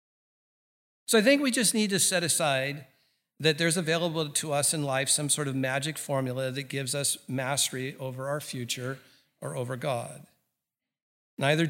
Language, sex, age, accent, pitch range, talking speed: English, male, 50-69, American, 130-160 Hz, 165 wpm